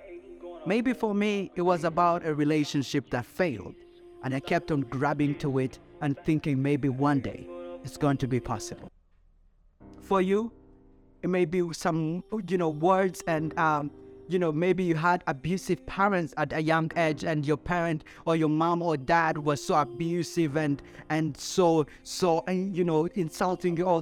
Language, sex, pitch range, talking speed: English, male, 155-200 Hz, 175 wpm